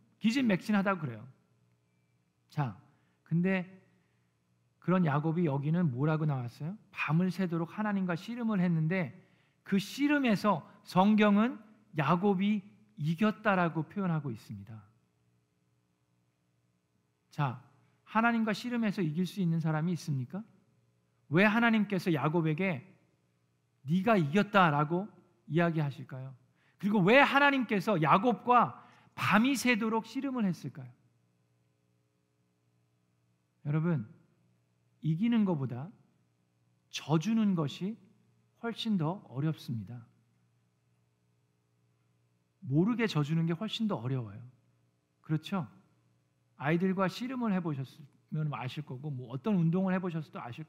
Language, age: Korean, 40-59